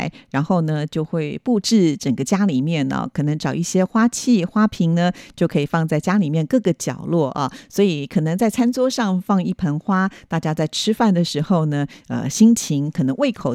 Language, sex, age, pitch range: Chinese, female, 50-69, 155-200 Hz